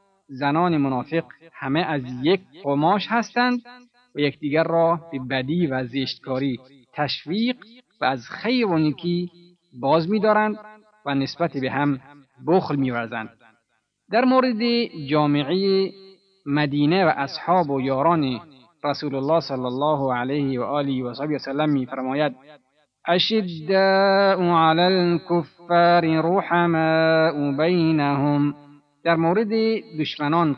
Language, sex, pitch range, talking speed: Persian, male, 135-180 Hz, 110 wpm